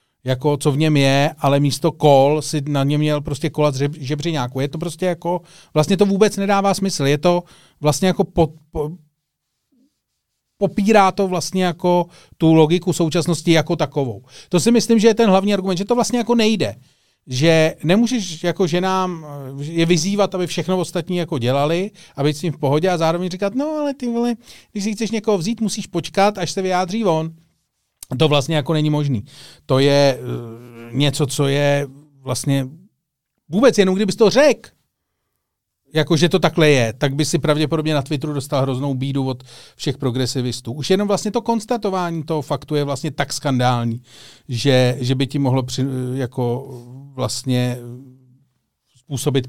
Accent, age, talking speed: native, 40-59, 170 wpm